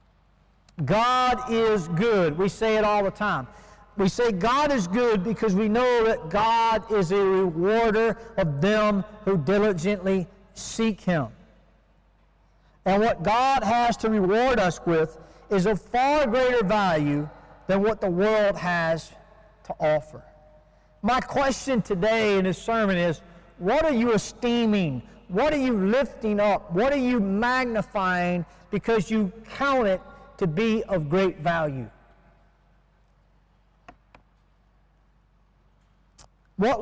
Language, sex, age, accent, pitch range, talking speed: English, male, 50-69, American, 180-225 Hz, 125 wpm